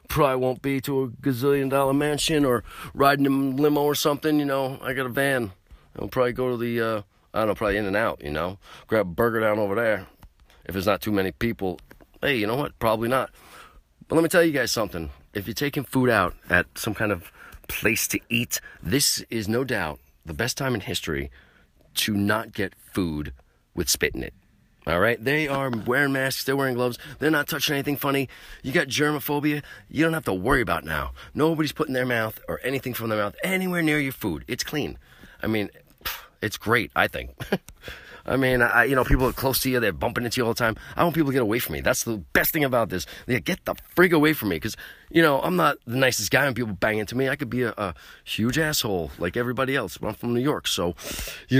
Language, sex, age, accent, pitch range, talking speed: English, male, 40-59, American, 100-135 Hz, 235 wpm